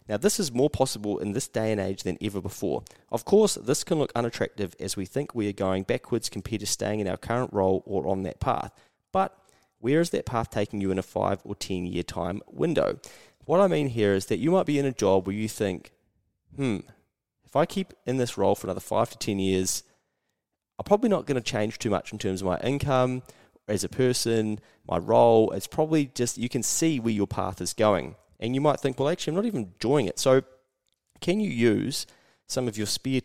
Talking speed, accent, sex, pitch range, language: 230 wpm, Australian, male, 100-135 Hz, English